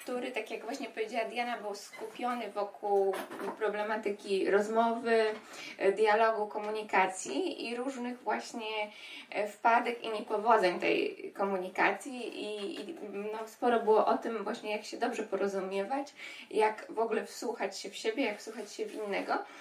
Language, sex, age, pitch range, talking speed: Polish, female, 20-39, 205-255 Hz, 140 wpm